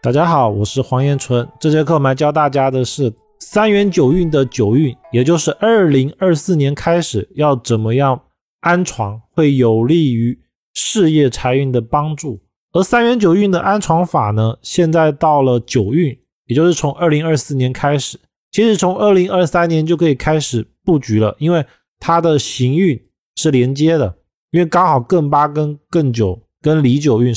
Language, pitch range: Chinese, 120-170 Hz